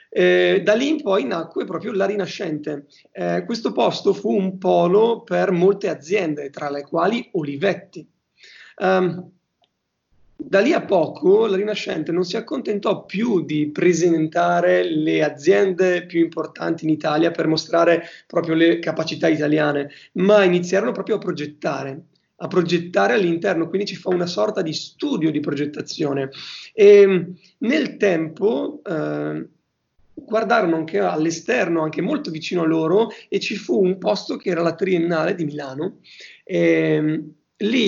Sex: male